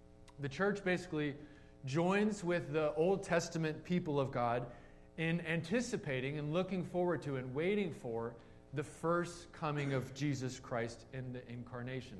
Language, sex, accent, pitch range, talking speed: English, male, American, 130-160 Hz, 145 wpm